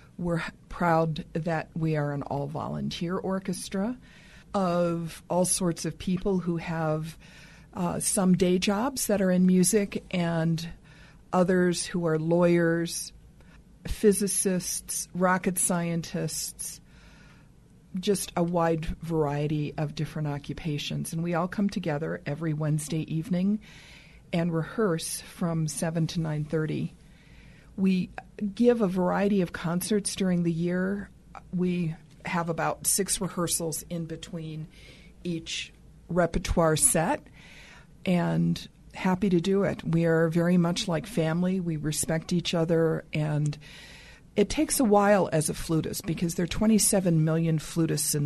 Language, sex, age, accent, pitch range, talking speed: English, female, 50-69, American, 160-185 Hz, 125 wpm